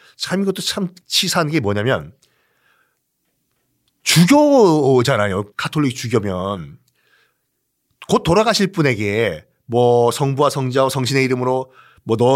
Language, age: Korean, 40-59